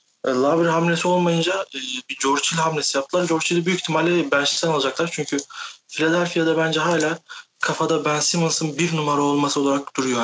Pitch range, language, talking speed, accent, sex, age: 135-160 Hz, Turkish, 140 wpm, native, male, 30-49